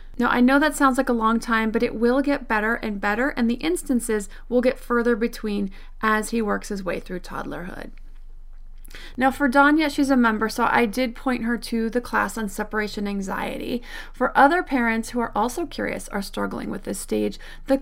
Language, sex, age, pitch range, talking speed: English, female, 30-49, 215-265 Hz, 200 wpm